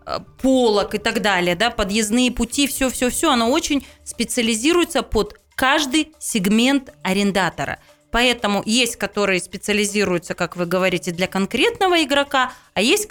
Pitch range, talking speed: 205-275 Hz, 125 wpm